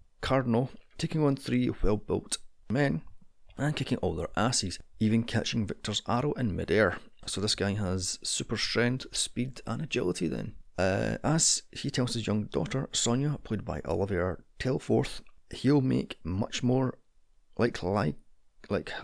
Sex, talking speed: male, 140 wpm